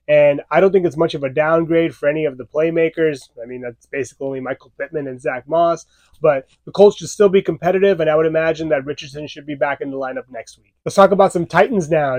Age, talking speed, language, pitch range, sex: 20-39, 250 wpm, English, 150-180 Hz, male